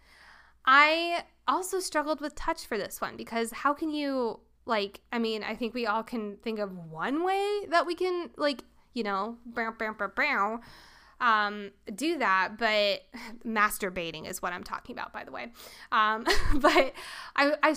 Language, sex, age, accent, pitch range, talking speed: English, female, 10-29, American, 220-290 Hz, 160 wpm